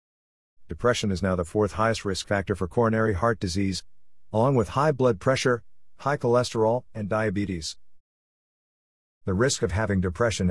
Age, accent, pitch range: 50-69, American, 95-130 Hz